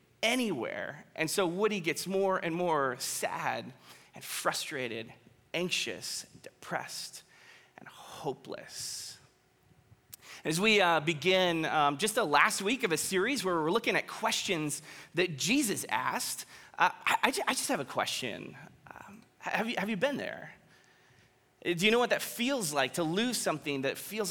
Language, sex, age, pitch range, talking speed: English, male, 20-39, 145-210 Hz, 155 wpm